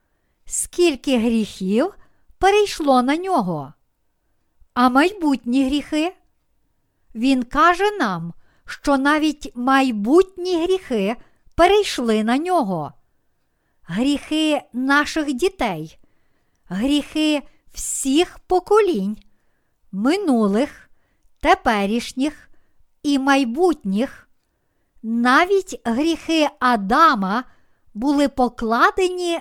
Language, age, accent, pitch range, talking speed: Ukrainian, 50-69, native, 245-335 Hz, 65 wpm